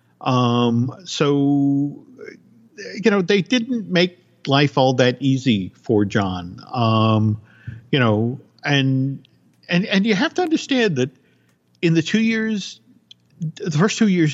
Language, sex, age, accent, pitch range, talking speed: English, male, 50-69, American, 115-165 Hz, 135 wpm